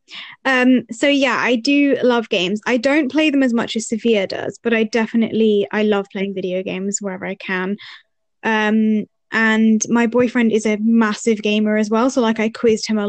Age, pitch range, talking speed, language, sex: 20-39, 210-245 Hz, 195 wpm, English, female